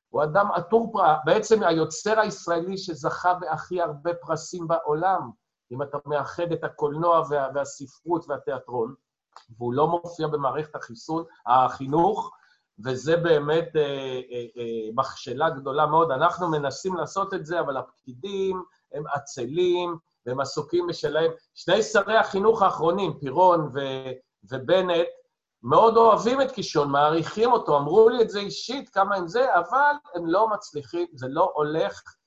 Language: Hebrew